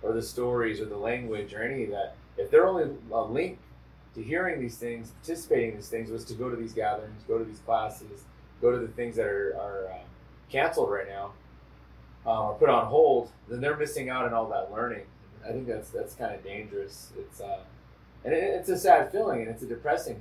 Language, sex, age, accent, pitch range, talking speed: English, male, 30-49, American, 105-145 Hz, 225 wpm